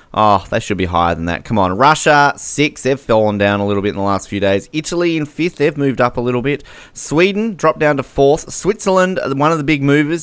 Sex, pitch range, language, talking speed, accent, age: male, 110-150 Hz, English, 245 wpm, Australian, 30-49